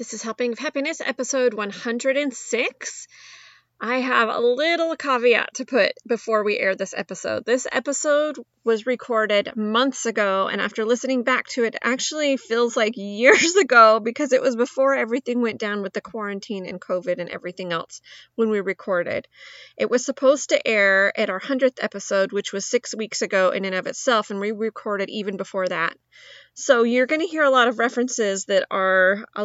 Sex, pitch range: female, 195-245 Hz